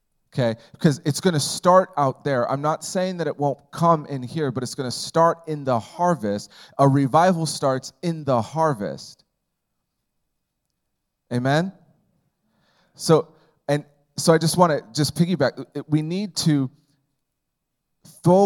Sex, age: male, 30-49